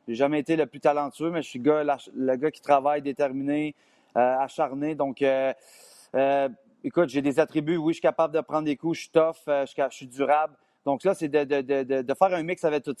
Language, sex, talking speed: French, male, 230 wpm